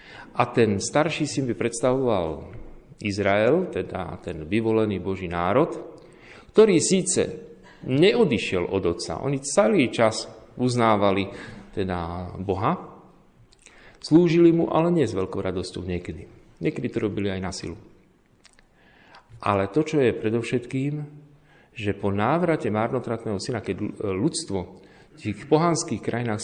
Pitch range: 100-150 Hz